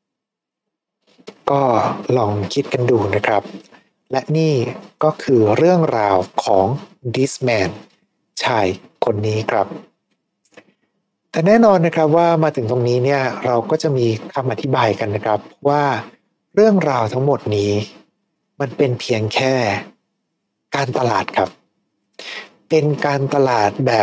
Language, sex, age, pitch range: Thai, male, 60-79, 120-160 Hz